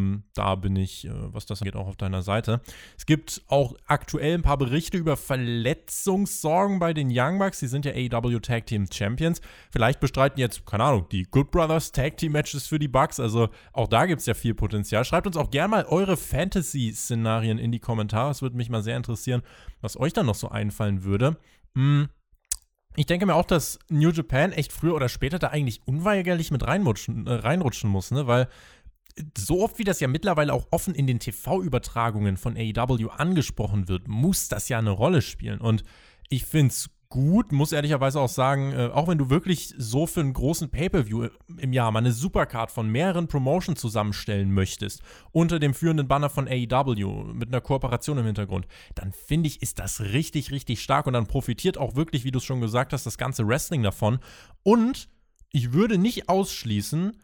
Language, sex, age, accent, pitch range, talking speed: German, male, 20-39, German, 115-155 Hz, 195 wpm